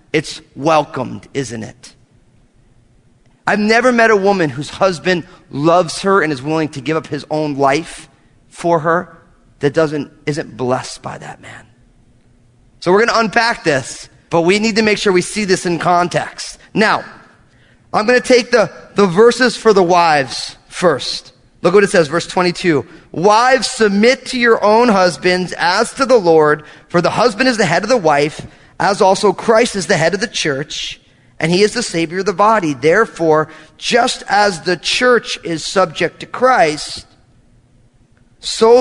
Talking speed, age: 170 wpm, 30-49